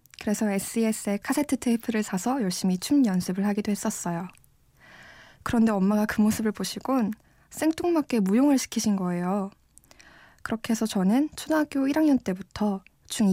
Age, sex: 20-39, female